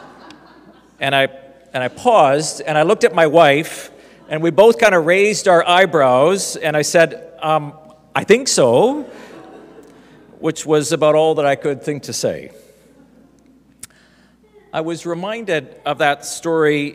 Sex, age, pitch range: male, 50-69, 135-175 Hz